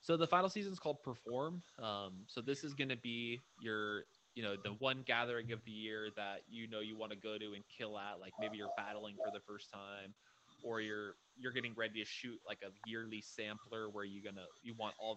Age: 20-39